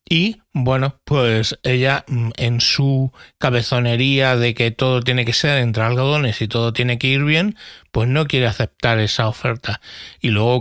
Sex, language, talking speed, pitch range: male, Spanish, 165 wpm, 115-135 Hz